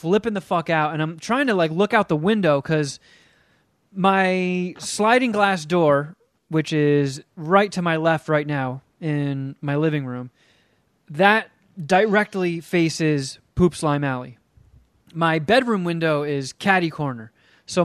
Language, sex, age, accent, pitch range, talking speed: English, male, 20-39, American, 145-190 Hz, 145 wpm